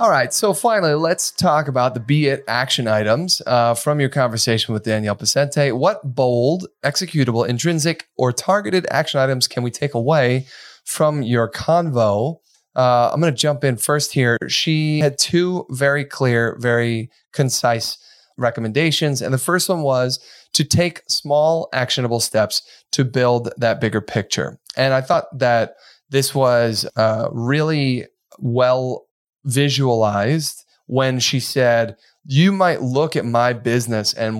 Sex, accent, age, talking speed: male, American, 30-49, 150 wpm